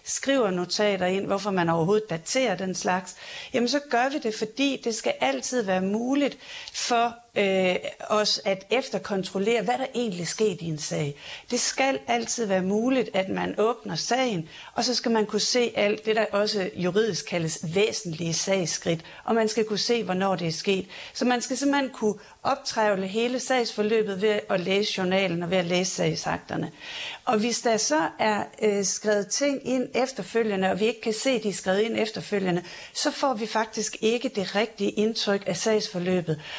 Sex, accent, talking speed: female, native, 180 wpm